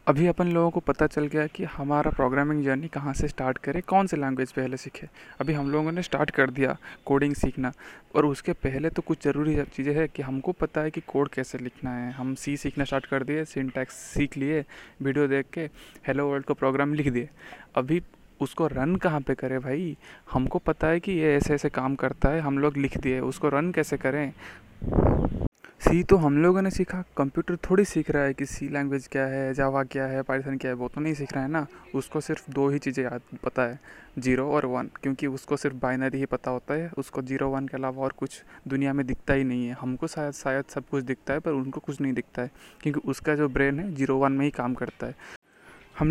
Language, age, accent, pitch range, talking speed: Hindi, 20-39, native, 135-155 Hz, 230 wpm